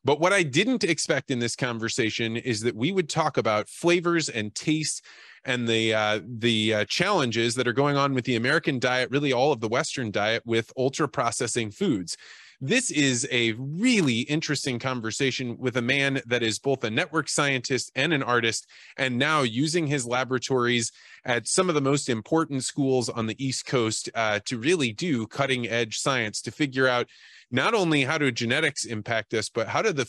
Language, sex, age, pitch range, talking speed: English, male, 20-39, 115-150 Hz, 190 wpm